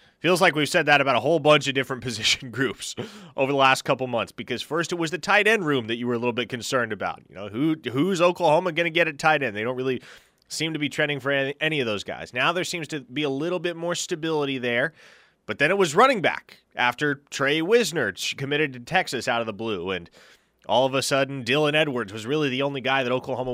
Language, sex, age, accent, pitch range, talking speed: English, male, 30-49, American, 120-155 Hz, 250 wpm